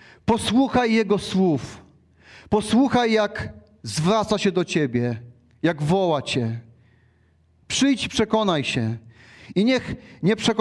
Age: 40-59